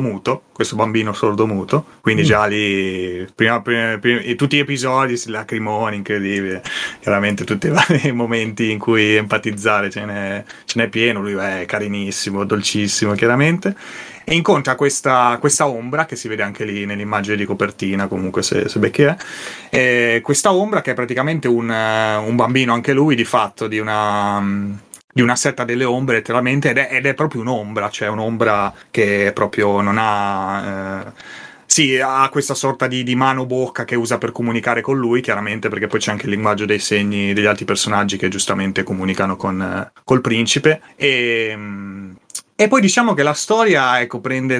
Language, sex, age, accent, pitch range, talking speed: Italian, male, 30-49, native, 105-130 Hz, 165 wpm